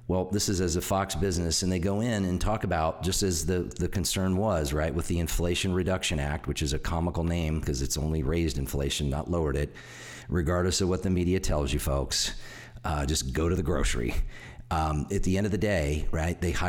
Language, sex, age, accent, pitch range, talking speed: English, male, 40-59, American, 80-95 Hz, 225 wpm